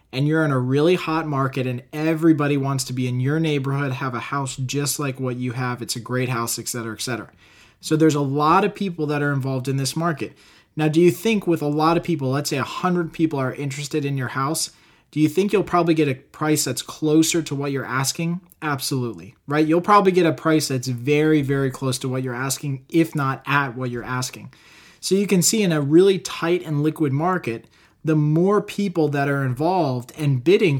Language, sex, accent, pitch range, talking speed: English, male, American, 135-160 Hz, 225 wpm